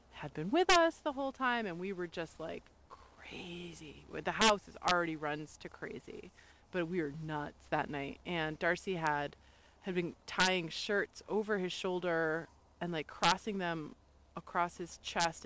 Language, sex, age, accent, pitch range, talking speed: English, female, 30-49, American, 165-205 Hz, 165 wpm